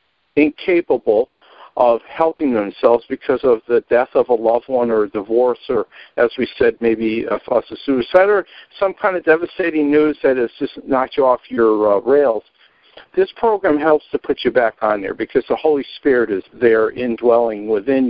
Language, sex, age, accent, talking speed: English, male, 60-79, American, 180 wpm